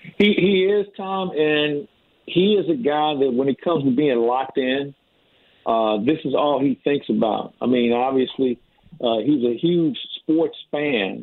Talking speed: 175 wpm